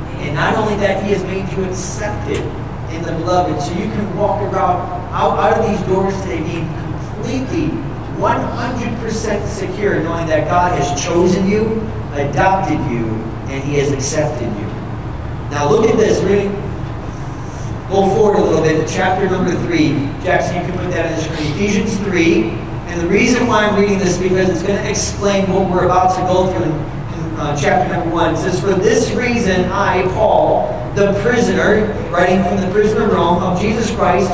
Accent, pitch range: American, 150-205 Hz